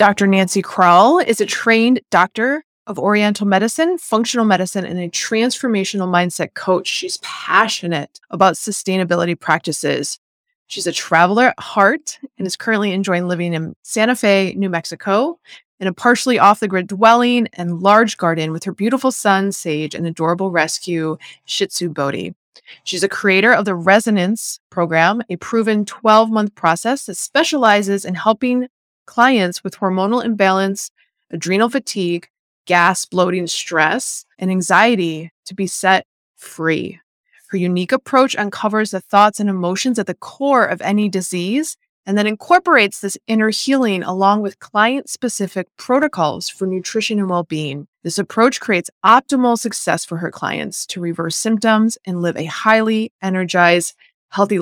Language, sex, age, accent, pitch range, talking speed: English, female, 20-39, American, 180-225 Hz, 145 wpm